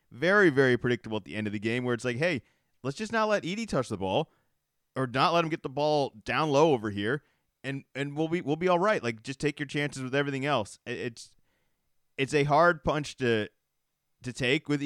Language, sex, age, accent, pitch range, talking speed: English, male, 30-49, American, 120-150 Hz, 230 wpm